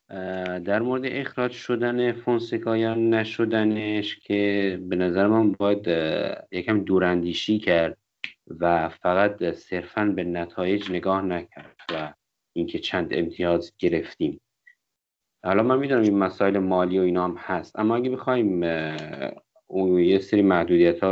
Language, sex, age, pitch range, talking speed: Persian, male, 50-69, 90-120 Hz, 125 wpm